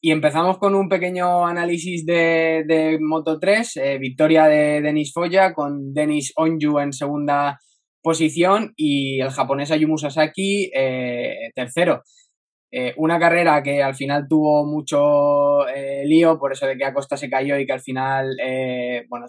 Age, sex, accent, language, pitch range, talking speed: 20-39, male, Spanish, Spanish, 140-165 Hz, 150 wpm